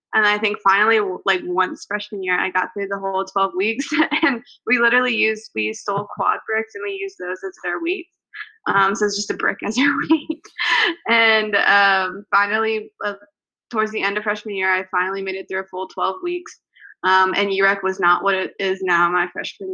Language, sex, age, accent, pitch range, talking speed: English, female, 20-39, American, 190-220 Hz, 210 wpm